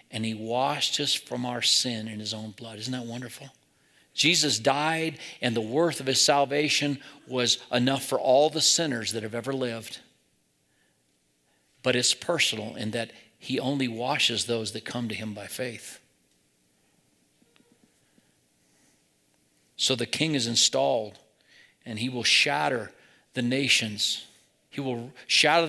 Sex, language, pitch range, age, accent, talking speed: male, English, 110-135 Hz, 50-69, American, 140 wpm